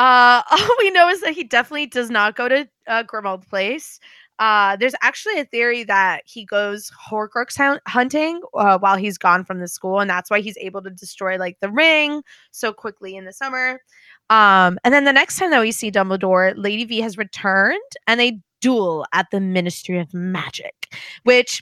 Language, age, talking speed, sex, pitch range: English, 20-39, 195 wpm, female, 190-245 Hz